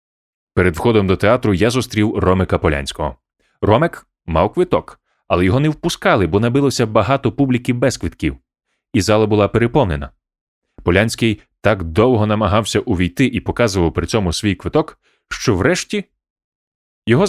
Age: 30-49